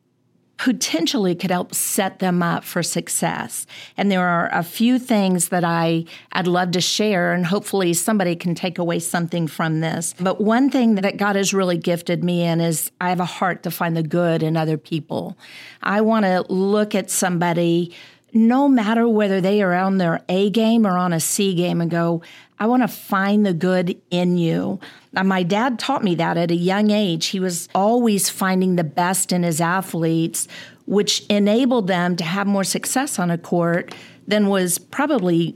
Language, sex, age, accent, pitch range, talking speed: English, female, 50-69, American, 170-210 Hz, 185 wpm